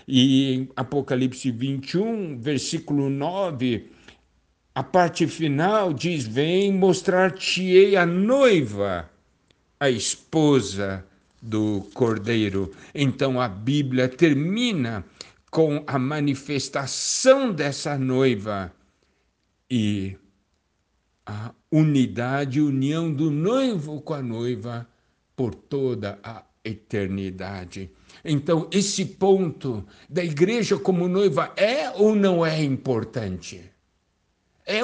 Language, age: Portuguese, 60-79